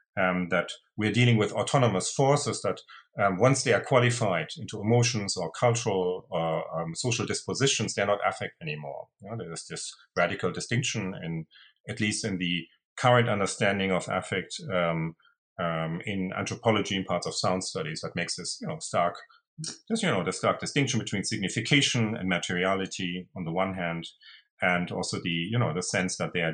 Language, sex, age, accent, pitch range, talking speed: English, male, 40-59, German, 95-120 Hz, 185 wpm